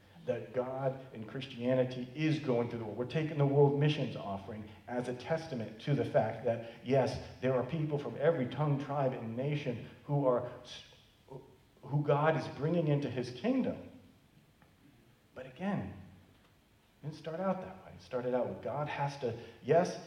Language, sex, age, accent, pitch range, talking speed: English, male, 40-59, American, 110-135 Hz, 170 wpm